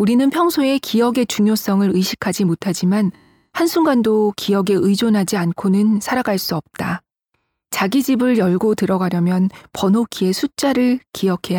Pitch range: 180-230 Hz